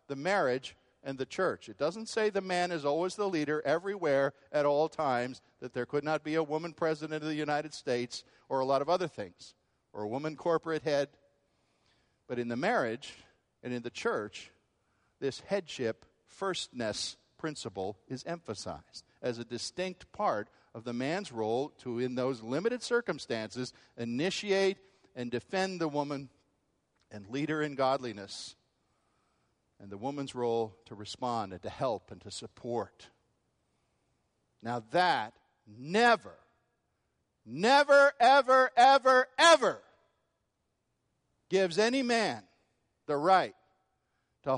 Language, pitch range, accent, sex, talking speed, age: English, 125-190 Hz, American, male, 135 wpm, 50-69